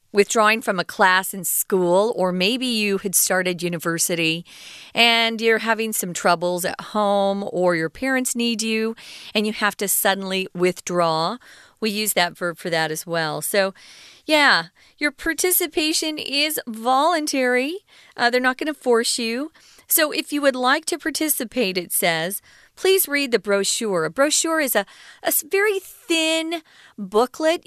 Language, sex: Chinese, female